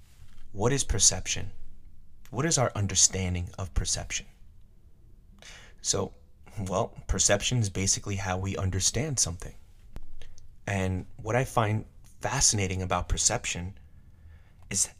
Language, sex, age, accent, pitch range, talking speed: English, male, 30-49, American, 90-110 Hz, 105 wpm